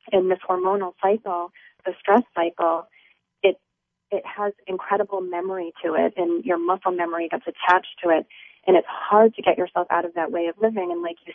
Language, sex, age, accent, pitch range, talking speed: English, female, 30-49, American, 170-200 Hz, 195 wpm